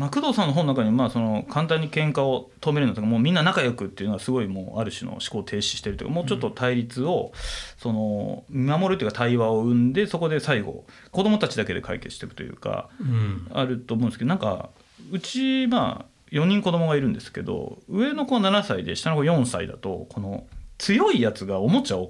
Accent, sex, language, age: native, male, Japanese, 30-49